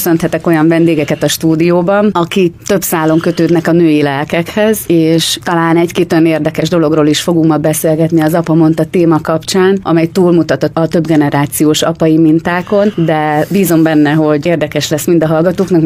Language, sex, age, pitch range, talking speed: Hungarian, female, 30-49, 150-175 Hz, 160 wpm